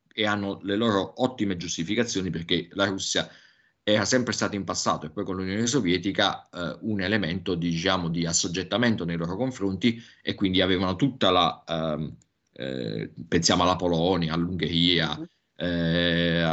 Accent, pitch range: native, 85-115 Hz